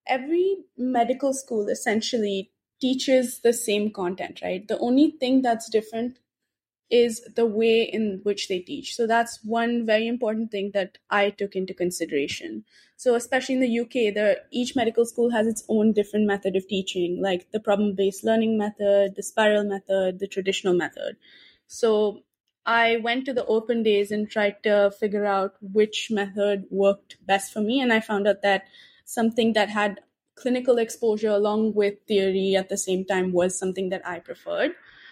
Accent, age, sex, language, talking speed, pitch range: Indian, 20-39, female, English, 165 wpm, 195-235 Hz